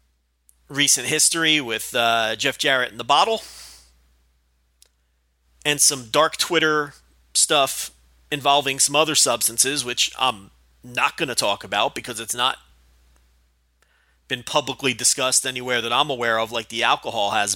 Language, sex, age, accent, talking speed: English, male, 30-49, American, 135 wpm